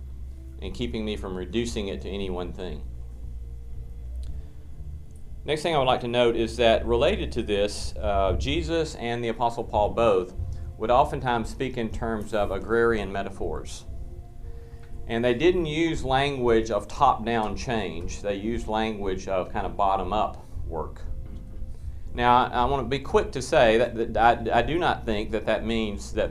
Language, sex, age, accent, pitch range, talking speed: English, male, 40-59, American, 80-115 Hz, 165 wpm